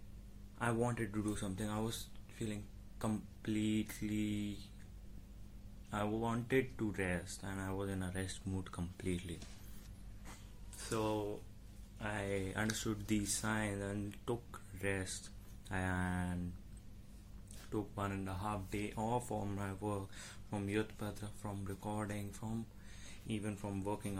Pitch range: 100-105 Hz